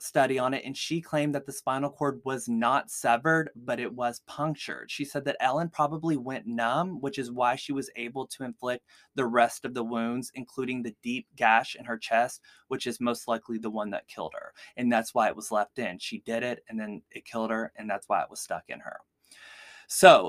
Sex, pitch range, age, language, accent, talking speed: male, 120-150 Hz, 20-39, English, American, 230 wpm